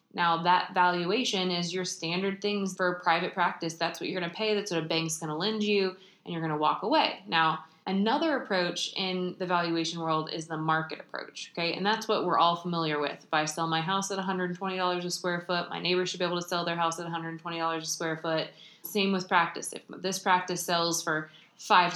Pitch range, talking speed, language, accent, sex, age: 165-190 Hz, 225 wpm, English, American, female, 20-39